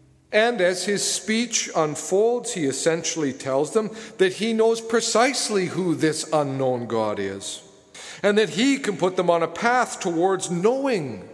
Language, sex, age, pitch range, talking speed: English, male, 50-69, 150-205 Hz, 155 wpm